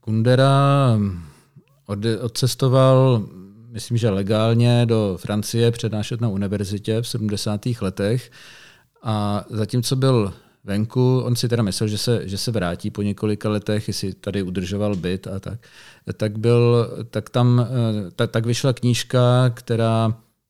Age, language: 40-59, Czech